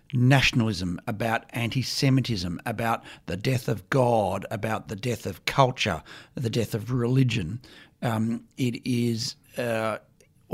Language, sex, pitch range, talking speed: English, male, 110-135 Hz, 120 wpm